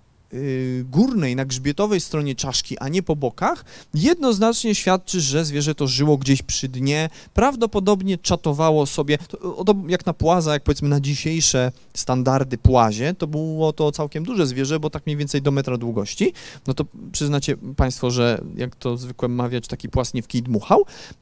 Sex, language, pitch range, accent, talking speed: male, Polish, 130-180 Hz, native, 155 wpm